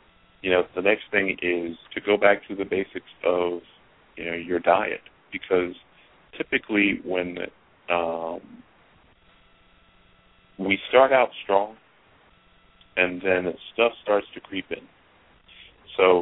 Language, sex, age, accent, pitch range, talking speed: English, male, 40-59, American, 85-95 Hz, 120 wpm